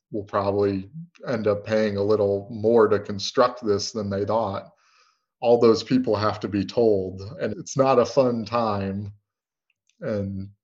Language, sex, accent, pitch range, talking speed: English, male, American, 100-115 Hz, 160 wpm